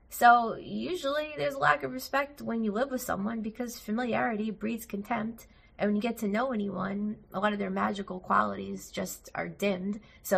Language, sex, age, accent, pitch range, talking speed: English, female, 20-39, American, 175-225 Hz, 190 wpm